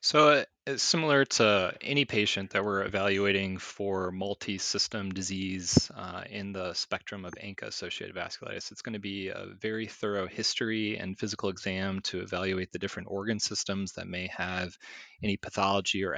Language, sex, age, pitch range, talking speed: English, male, 20-39, 95-115 Hz, 155 wpm